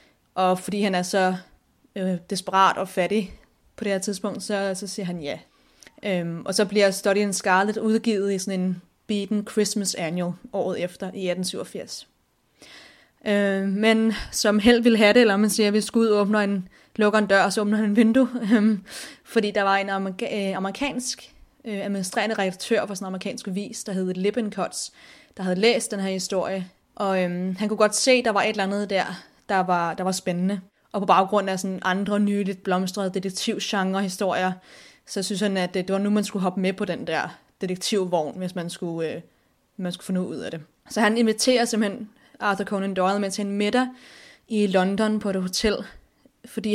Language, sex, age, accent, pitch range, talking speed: Danish, female, 20-39, native, 190-215 Hz, 195 wpm